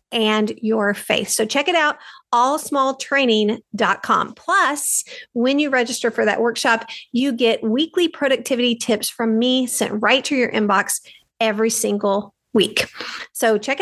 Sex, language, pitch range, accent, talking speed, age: female, English, 220-275 Hz, American, 140 wpm, 50-69